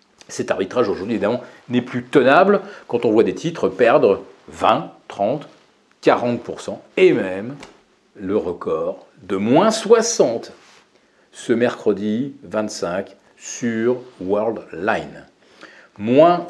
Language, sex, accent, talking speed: French, male, French, 110 wpm